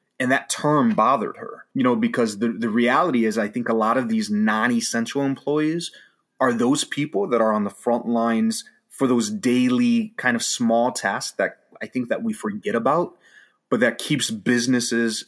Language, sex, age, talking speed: English, male, 30-49, 185 wpm